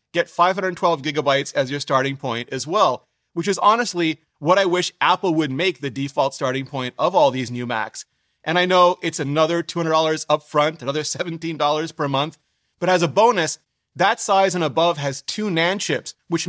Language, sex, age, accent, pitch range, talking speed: English, male, 30-49, American, 145-180 Hz, 185 wpm